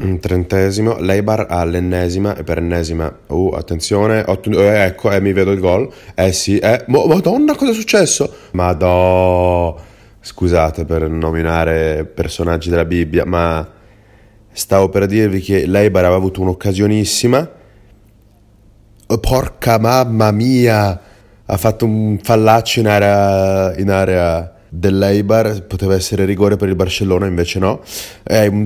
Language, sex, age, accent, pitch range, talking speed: Italian, male, 30-49, native, 95-115 Hz, 130 wpm